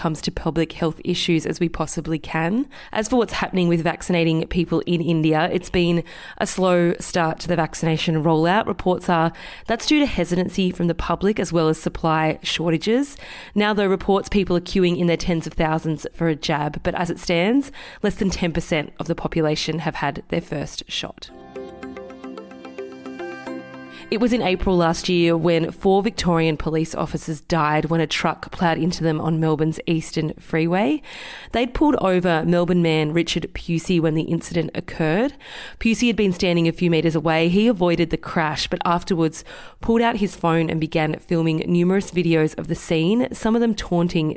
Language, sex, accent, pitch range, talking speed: English, female, Australian, 160-190 Hz, 180 wpm